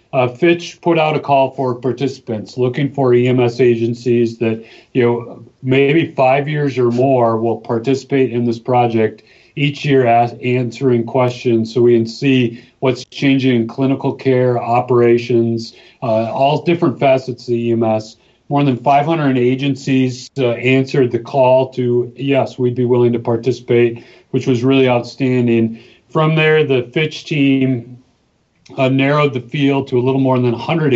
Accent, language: American, English